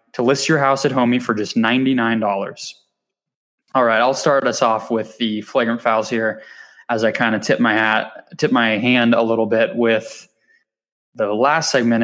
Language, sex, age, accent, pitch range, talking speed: English, male, 20-39, American, 110-130 Hz, 185 wpm